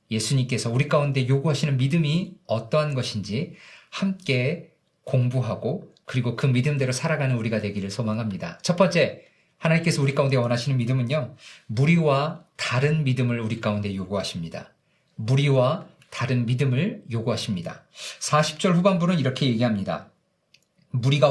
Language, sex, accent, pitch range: Korean, male, native, 120-160 Hz